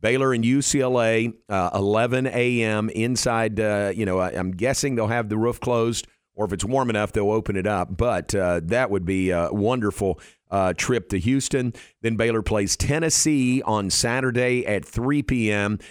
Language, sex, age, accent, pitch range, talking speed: English, male, 50-69, American, 100-130 Hz, 175 wpm